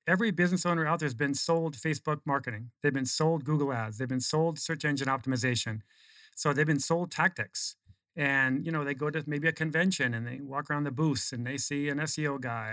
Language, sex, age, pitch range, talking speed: English, male, 40-59, 130-155 Hz, 220 wpm